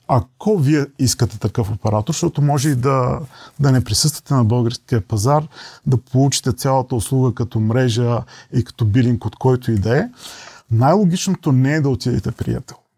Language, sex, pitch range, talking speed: Bulgarian, male, 115-140 Hz, 160 wpm